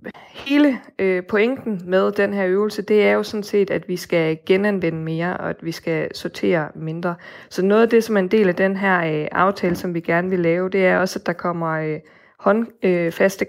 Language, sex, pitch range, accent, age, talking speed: Danish, female, 170-195 Hz, native, 20-39, 225 wpm